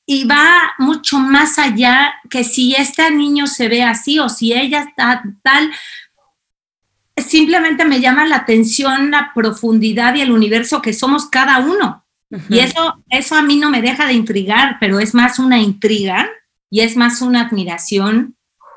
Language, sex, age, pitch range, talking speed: Spanish, female, 40-59, 210-255 Hz, 165 wpm